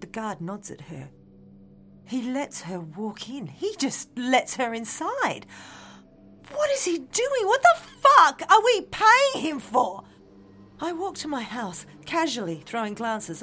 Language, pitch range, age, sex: English, 185-300 Hz, 40-59, female